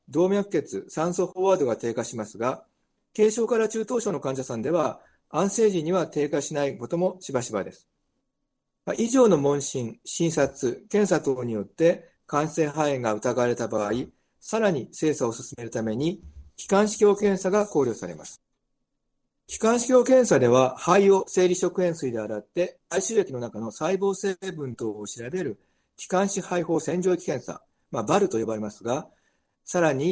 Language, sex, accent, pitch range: Japanese, male, native, 130-195 Hz